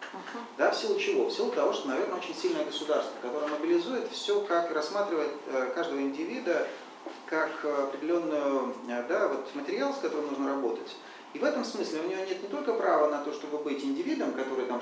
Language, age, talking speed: English, 40-59, 180 wpm